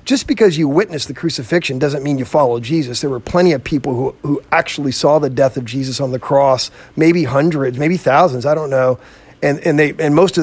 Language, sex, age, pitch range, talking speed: English, male, 40-59, 135-165 Hz, 230 wpm